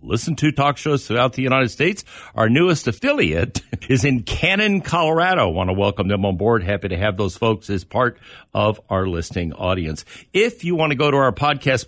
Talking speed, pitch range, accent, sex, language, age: 205 wpm, 100-130 Hz, American, male, English, 50-69